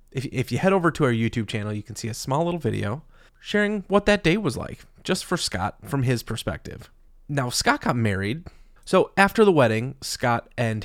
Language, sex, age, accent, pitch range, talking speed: English, male, 20-39, American, 115-140 Hz, 205 wpm